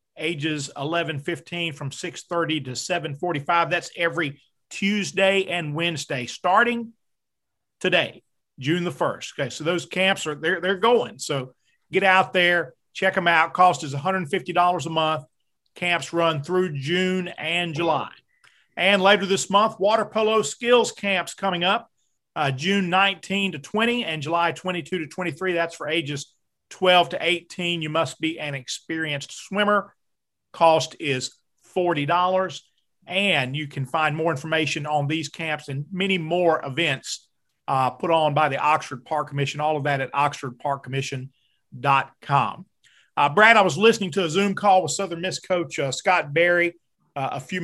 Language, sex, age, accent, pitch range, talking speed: English, male, 40-59, American, 150-185 Hz, 155 wpm